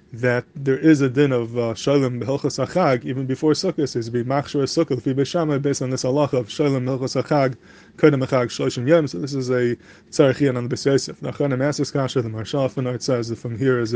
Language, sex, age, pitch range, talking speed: English, male, 20-39, 125-145 Hz, 150 wpm